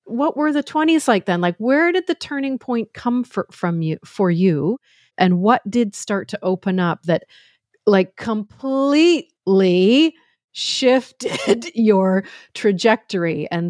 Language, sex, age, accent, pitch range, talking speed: English, female, 40-59, American, 165-240 Hz, 135 wpm